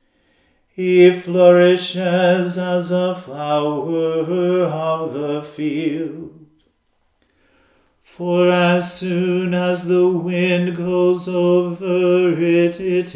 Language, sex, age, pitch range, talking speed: English, male, 40-59, 160-180 Hz, 80 wpm